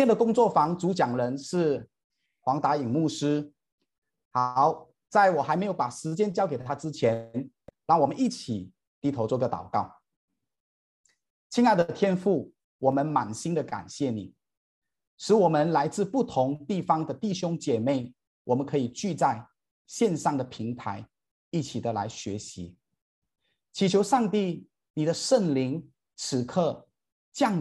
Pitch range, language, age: 125-185 Hz, Chinese, 30-49